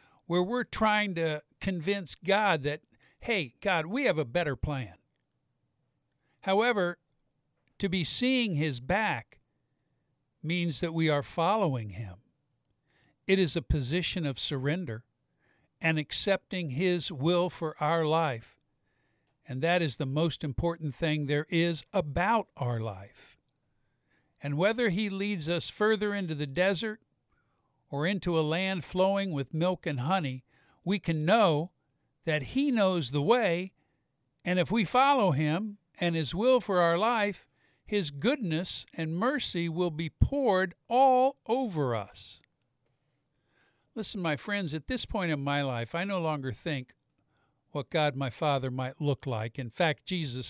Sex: male